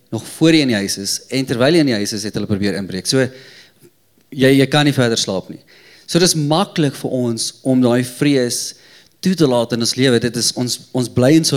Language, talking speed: English, 235 wpm